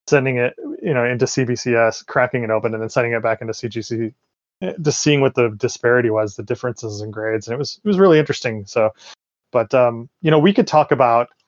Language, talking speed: English, 220 wpm